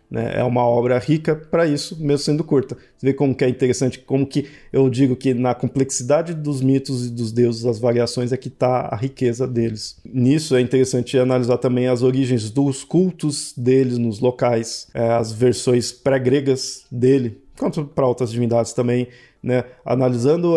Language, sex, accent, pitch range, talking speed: Portuguese, male, Brazilian, 120-145 Hz, 165 wpm